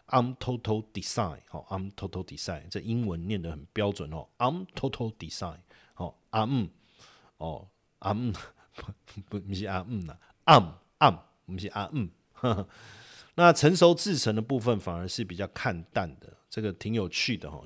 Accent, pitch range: native, 90-115 Hz